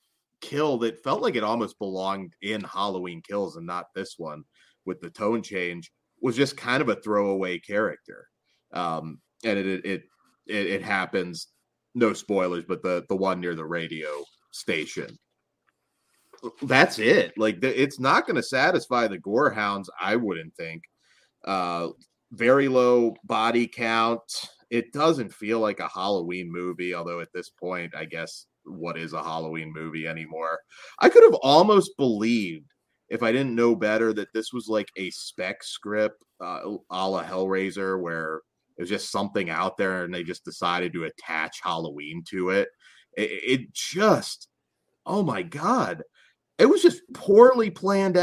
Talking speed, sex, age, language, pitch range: 160 wpm, male, 30-49, English, 90-145 Hz